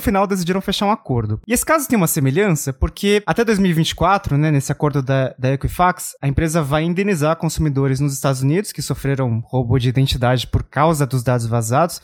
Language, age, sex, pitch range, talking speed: Portuguese, 20-39, male, 145-210 Hz, 190 wpm